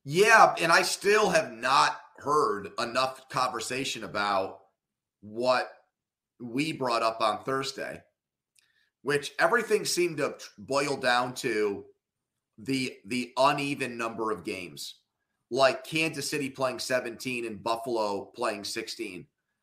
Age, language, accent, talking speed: 30-49, English, American, 115 wpm